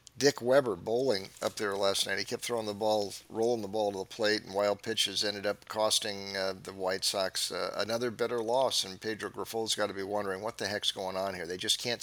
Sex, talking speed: male, 245 wpm